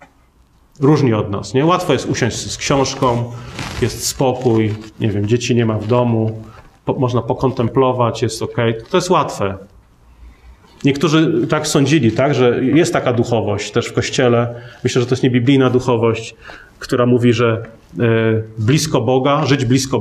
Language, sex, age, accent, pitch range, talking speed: Polish, male, 30-49, native, 120-150 Hz, 150 wpm